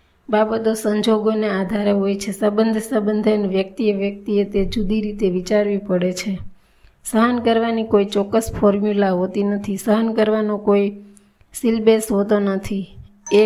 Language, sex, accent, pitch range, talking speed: Gujarati, female, native, 200-220 Hz, 75 wpm